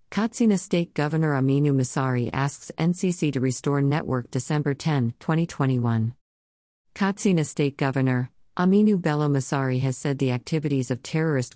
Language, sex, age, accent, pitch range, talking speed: English, female, 50-69, American, 125-160 Hz, 130 wpm